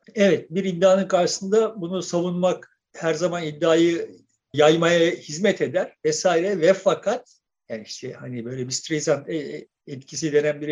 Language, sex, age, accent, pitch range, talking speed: Turkish, male, 50-69, native, 155-215 Hz, 135 wpm